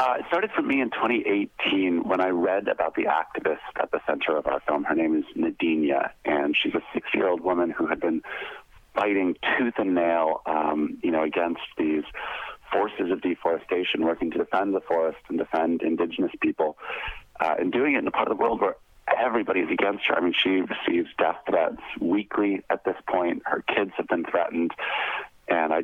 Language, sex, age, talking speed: English, male, 40-59, 195 wpm